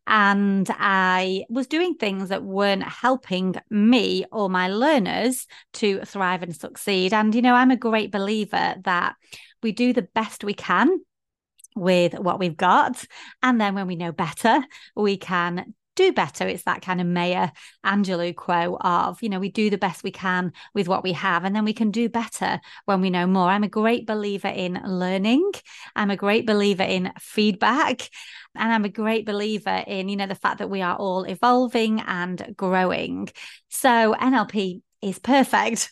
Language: English